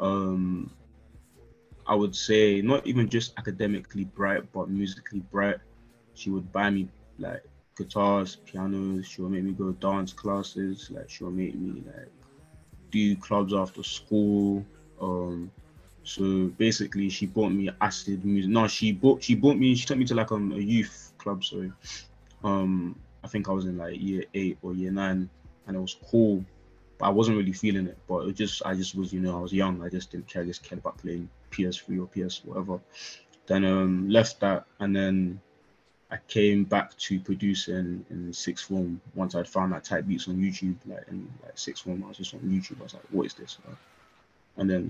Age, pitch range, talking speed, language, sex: 20-39, 95-105 Hz, 195 wpm, English, male